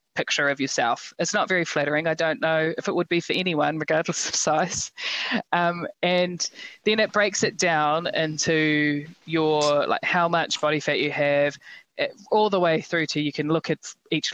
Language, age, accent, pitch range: English, 20-39, Australian, 150-175 Hz